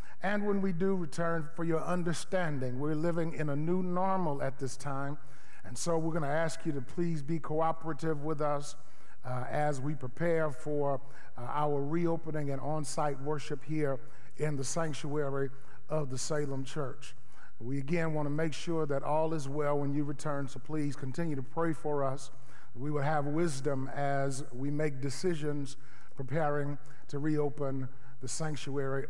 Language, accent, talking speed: English, American, 170 wpm